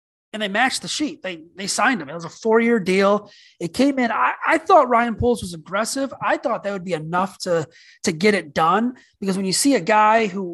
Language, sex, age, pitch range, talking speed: English, male, 30-49, 180-250 Hz, 240 wpm